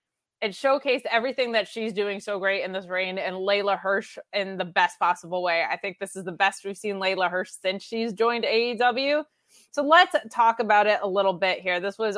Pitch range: 200-245 Hz